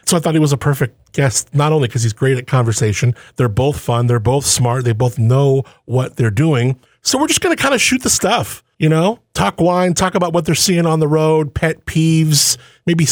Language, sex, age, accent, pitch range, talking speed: English, male, 40-59, American, 125-165 Hz, 240 wpm